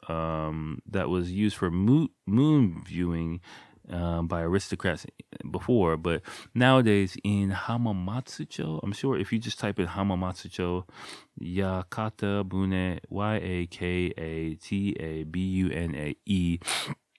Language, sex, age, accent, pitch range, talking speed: English, male, 20-39, American, 85-100 Hz, 90 wpm